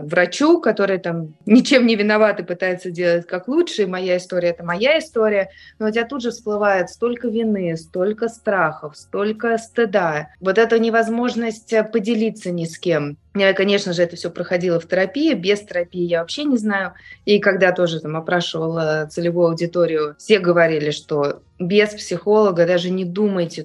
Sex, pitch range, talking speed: female, 175-225 Hz, 165 wpm